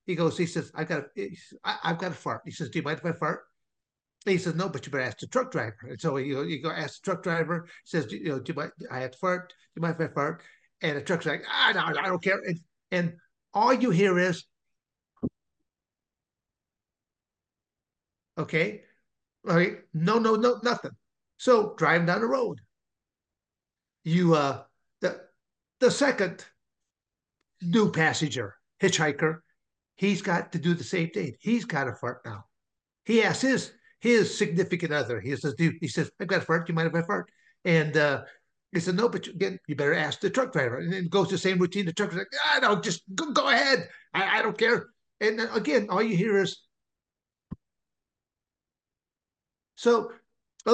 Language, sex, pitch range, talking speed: English, male, 155-205 Hz, 200 wpm